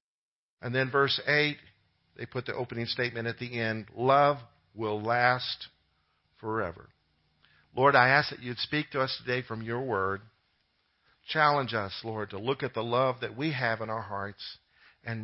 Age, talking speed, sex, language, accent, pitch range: 50-69, 170 wpm, male, English, American, 100-150 Hz